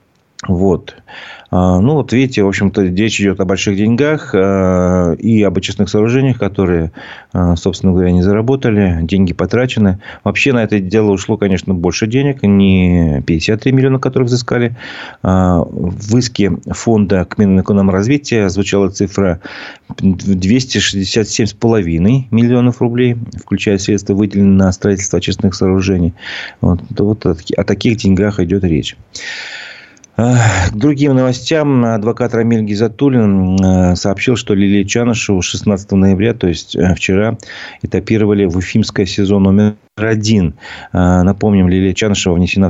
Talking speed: 120 wpm